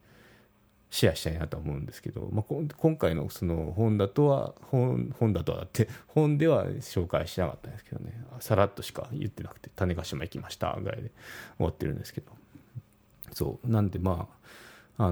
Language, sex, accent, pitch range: Japanese, male, native, 100-140 Hz